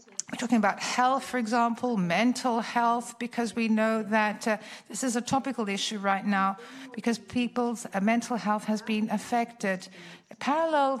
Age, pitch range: 60-79, 225-250 Hz